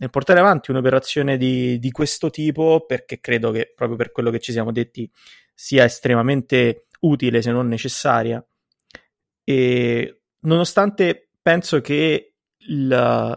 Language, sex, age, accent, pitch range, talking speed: Italian, male, 30-49, native, 120-140 Hz, 125 wpm